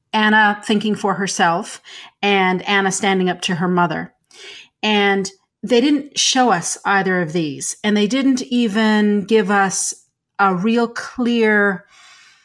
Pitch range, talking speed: 190-235 Hz, 135 wpm